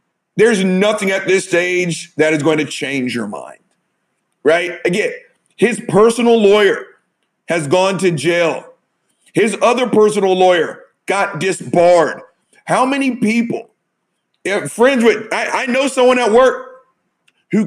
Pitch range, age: 190-235 Hz, 40-59